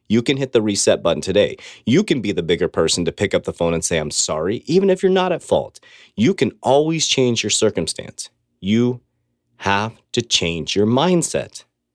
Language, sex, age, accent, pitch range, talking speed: English, male, 30-49, American, 100-150 Hz, 200 wpm